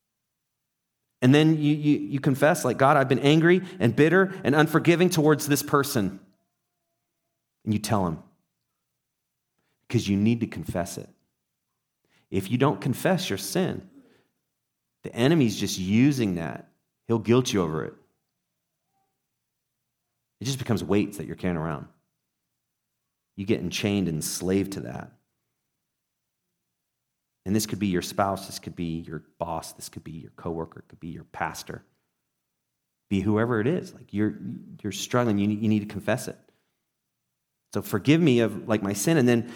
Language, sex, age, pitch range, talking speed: English, male, 30-49, 100-145 Hz, 160 wpm